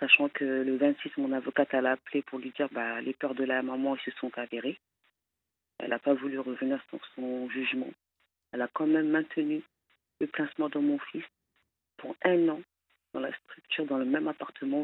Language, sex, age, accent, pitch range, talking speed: French, female, 40-59, French, 125-160 Hz, 200 wpm